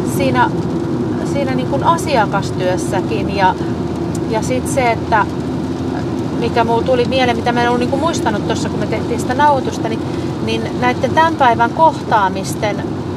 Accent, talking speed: native, 140 wpm